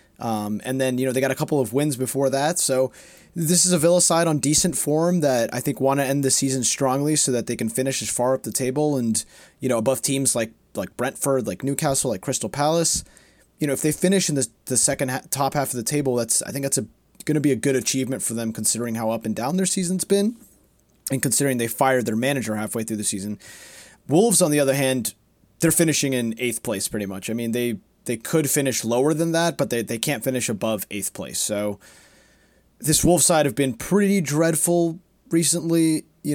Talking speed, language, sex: 225 wpm, English, male